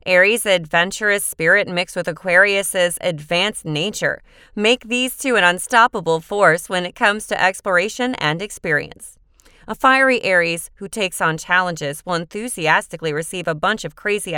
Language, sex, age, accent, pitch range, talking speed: English, female, 30-49, American, 170-230 Hz, 145 wpm